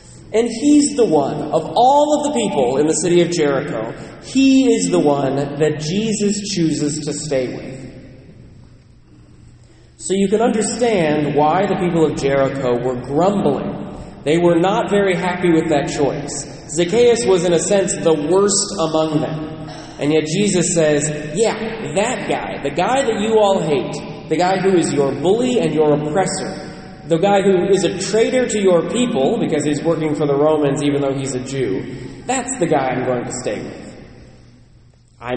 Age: 30-49